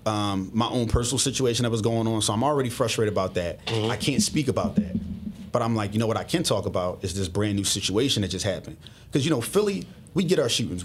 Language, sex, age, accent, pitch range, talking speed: English, male, 30-49, American, 100-115 Hz, 250 wpm